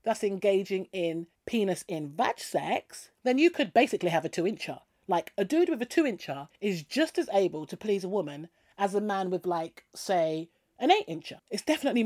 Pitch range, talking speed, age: 175-255 Hz, 190 wpm, 40-59